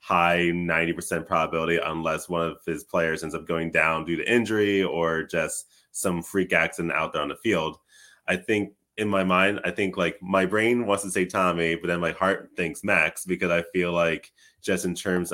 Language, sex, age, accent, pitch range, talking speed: English, male, 20-39, American, 85-95 Hz, 205 wpm